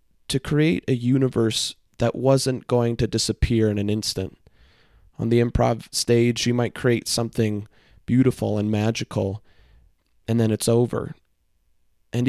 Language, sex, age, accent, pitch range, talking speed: English, male, 20-39, American, 100-125 Hz, 135 wpm